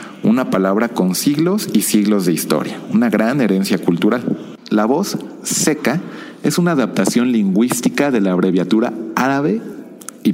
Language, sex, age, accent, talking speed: Spanish, male, 40-59, Mexican, 140 wpm